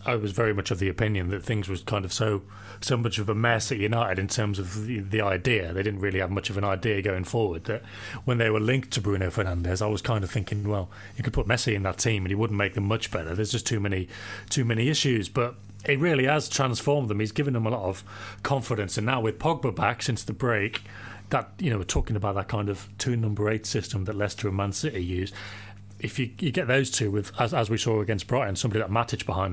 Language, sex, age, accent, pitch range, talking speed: English, male, 30-49, British, 100-125 Hz, 260 wpm